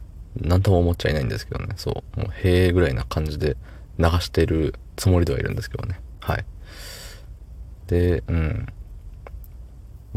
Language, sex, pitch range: Japanese, male, 80-105 Hz